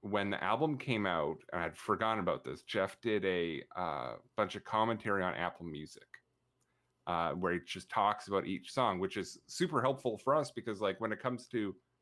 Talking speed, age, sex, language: 205 wpm, 30-49, male, English